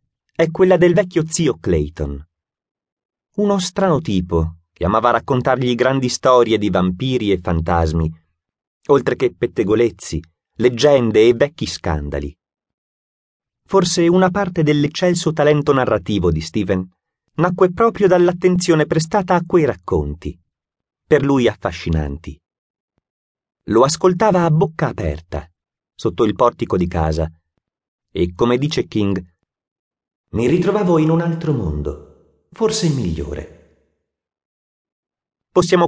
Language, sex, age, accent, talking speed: Italian, male, 30-49, native, 110 wpm